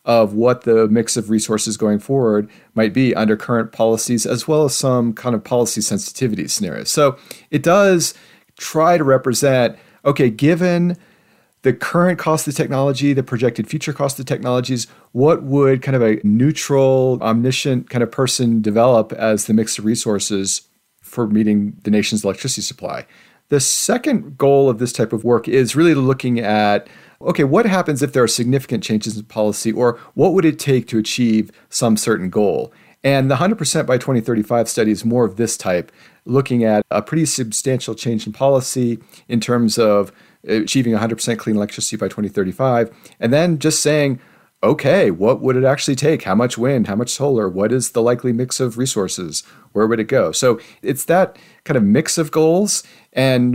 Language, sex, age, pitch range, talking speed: English, male, 40-59, 110-135 Hz, 180 wpm